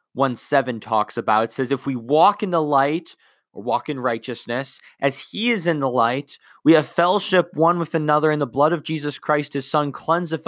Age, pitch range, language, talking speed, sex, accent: 20-39, 150-210 Hz, English, 210 wpm, male, American